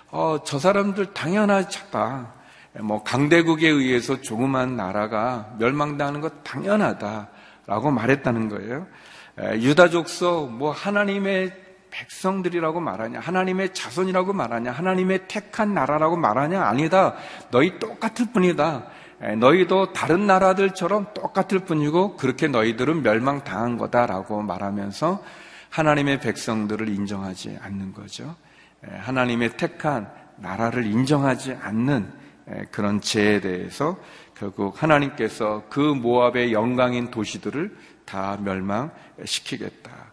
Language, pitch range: Korean, 110-170 Hz